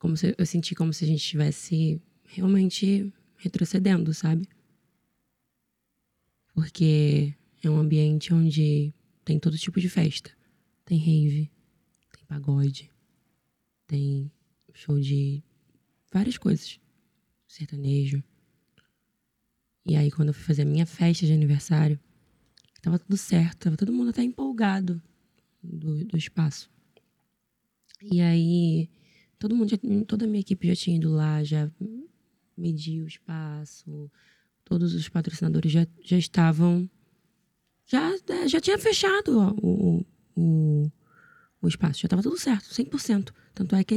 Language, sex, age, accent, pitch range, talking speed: Portuguese, female, 20-39, Brazilian, 155-195 Hz, 120 wpm